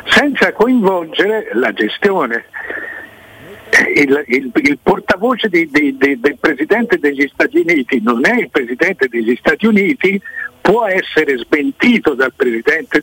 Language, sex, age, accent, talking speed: Italian, male, 60-79, native, 130 wpm